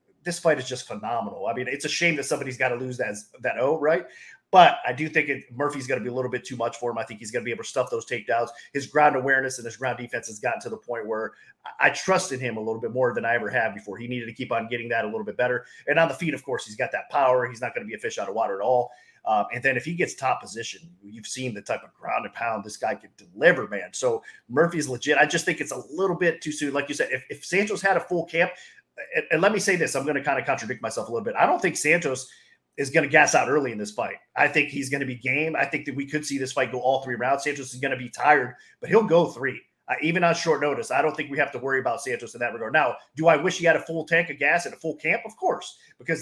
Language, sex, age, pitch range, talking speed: English, male, 30-49, 125-165 Hz, 310 wpm